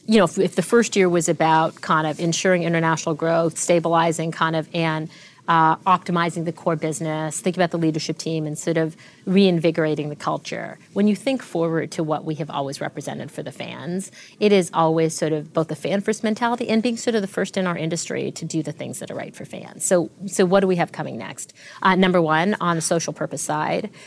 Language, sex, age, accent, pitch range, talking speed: English, female, 40-59, American, 160-190 Hz, 225 wpm